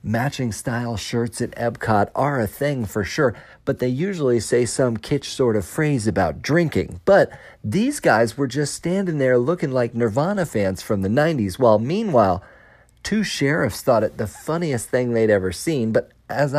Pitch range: 110-145 Hz